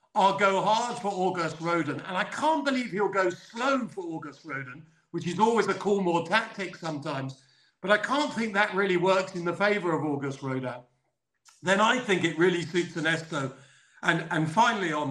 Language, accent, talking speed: English, British, 190 wpm